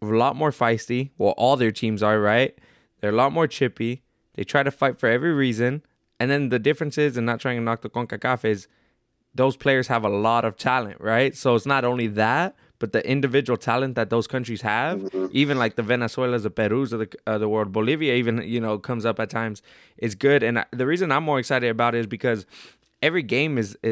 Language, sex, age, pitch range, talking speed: English, male, 20-39, 115-130 Hz, 230 wpm